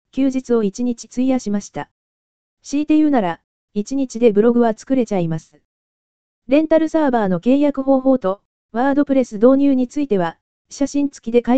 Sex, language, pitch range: female, Japanese, 195-270 Hz